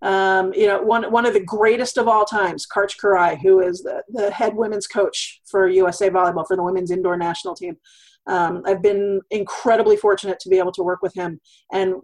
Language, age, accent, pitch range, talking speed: English, 30-49, American, 185-225 Hz, 210 wpm